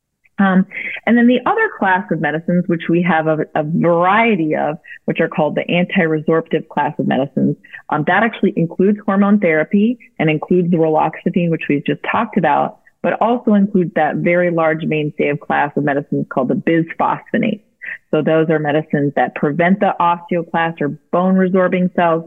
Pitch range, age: 155-195 Hz, 30-49